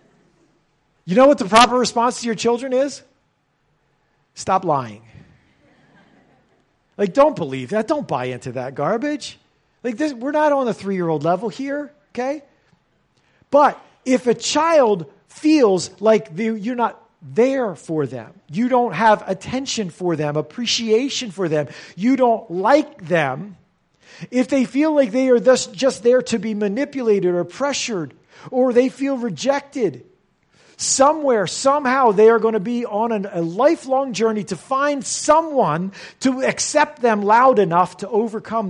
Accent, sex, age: American, male, 40-59